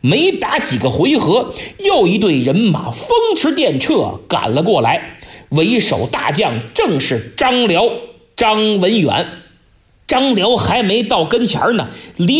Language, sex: Chinese, male